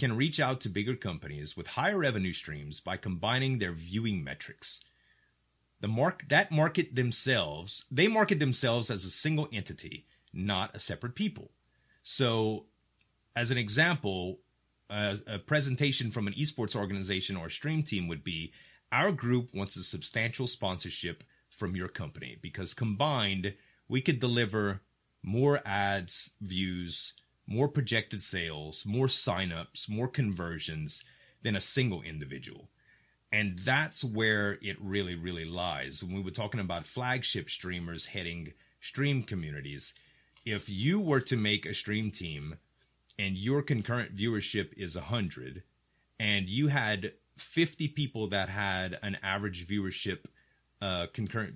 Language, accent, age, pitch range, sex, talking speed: English, American, 30-49, 90-125 Hz, male, 140 wpm